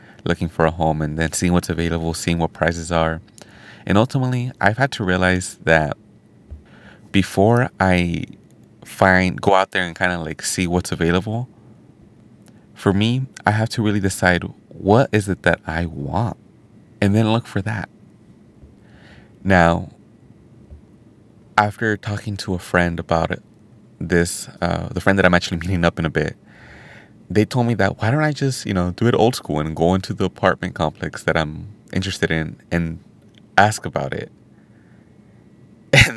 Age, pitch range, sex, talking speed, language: 30-49, 85-105 Hz, male, 165 wpm, English